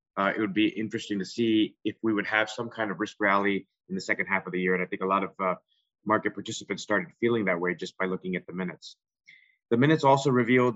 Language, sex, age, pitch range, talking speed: English, male, 30-49, 100-120 Hz, 260 wpm